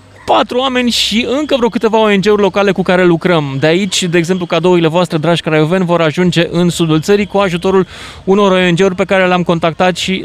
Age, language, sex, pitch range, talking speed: 20-39, Romanian, male, 150-200 Hz, 195 wpm